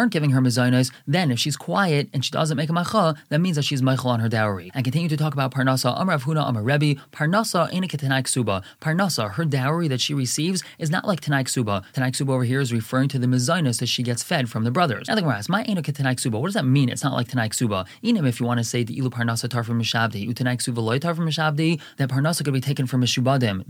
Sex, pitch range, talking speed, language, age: male, 120-150 Hz, 235 wpm, English, 20-39